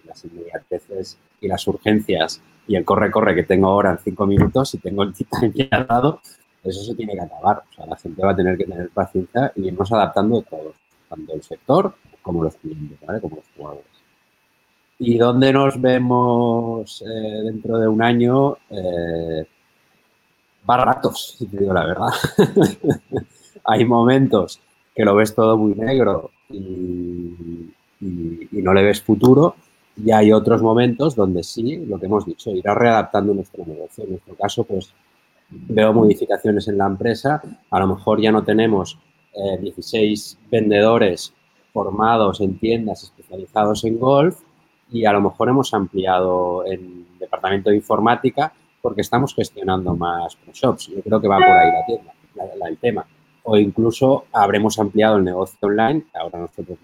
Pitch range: 95-115 Hz